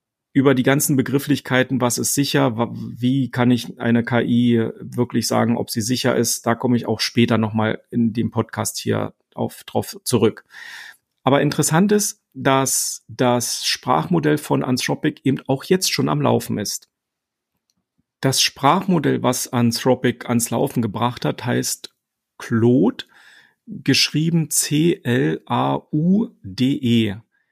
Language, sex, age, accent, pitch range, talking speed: German, male, 40-59, German, 115-140 Hz, 125 wpm